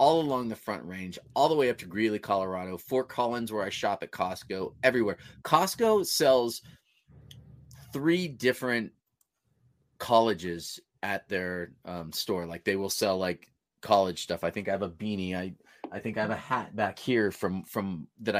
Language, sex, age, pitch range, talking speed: English, male, 30-49, 95-135 Hz, 175 wpm